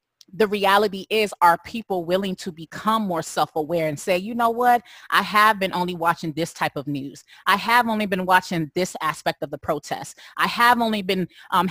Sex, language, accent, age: female, English, American, 30-49